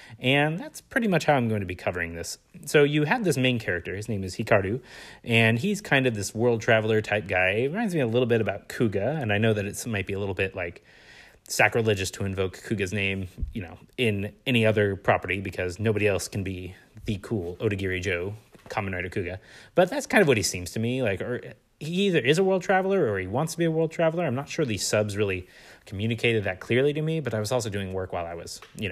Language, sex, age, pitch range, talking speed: English, male, 30-49, 95-125 Hz, 245 wpm